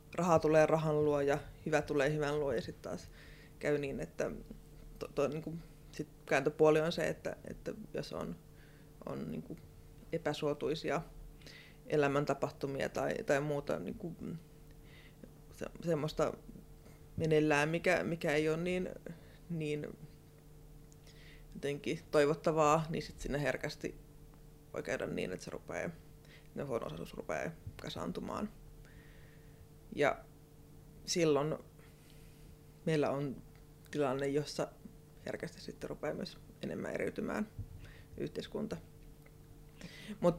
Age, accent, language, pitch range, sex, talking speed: 20-39, native, Finnish, 145-155 Hz, female, 105 wpm